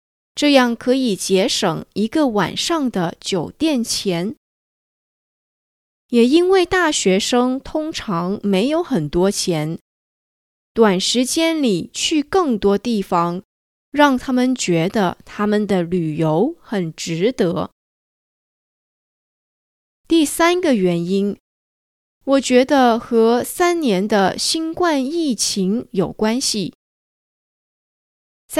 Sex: female